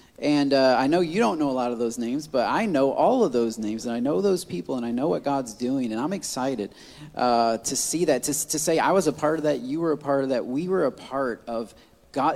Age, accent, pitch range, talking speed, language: 30-49, American, 120-170 Hz, 275 wpm, English